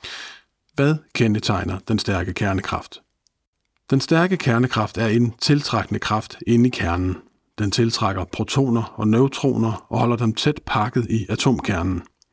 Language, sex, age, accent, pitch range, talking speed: Danish, male, 50-69, native, 100-125 Hz, 130 wpm